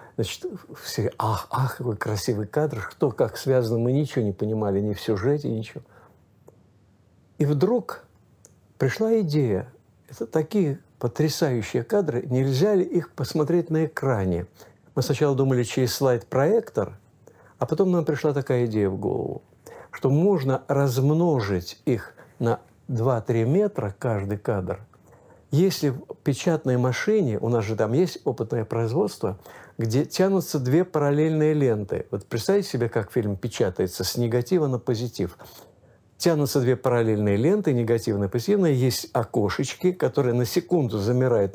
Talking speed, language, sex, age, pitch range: 135 wpm, Russian, male, 50-69, 115-155 Hz